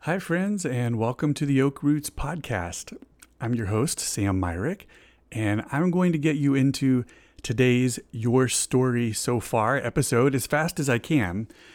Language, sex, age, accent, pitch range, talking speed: English, male, 30-49, American, 115-145 Hz, 165 wpm